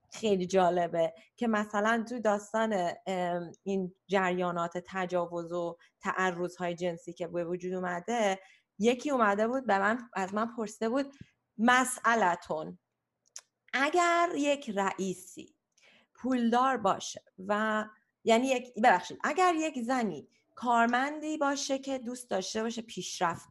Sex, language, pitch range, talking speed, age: female, Persian, 190-265 Hz, 115 wpm, 30-49